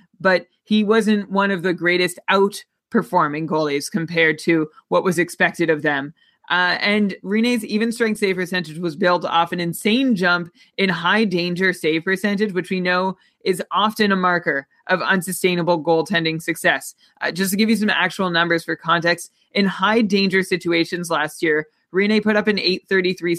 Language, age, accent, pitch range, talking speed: English, 20-39, American, 175-215 Hz, 160 wpm